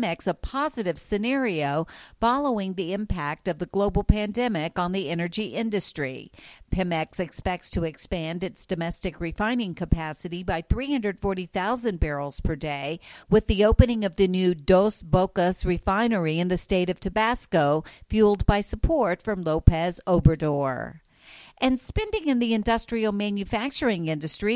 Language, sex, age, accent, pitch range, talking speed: English, female, 50-69, American, 170-220 Hz, 135 wpm